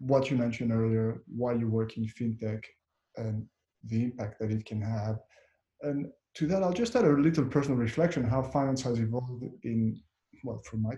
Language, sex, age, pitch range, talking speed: English, male, 30-49, 115-140 Hz, 190 wpm